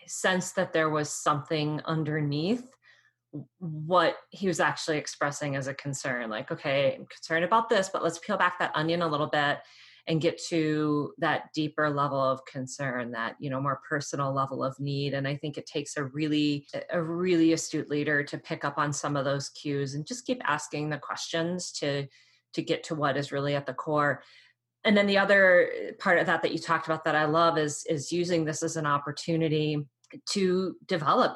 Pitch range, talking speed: 145-170 Hz, 195 wpm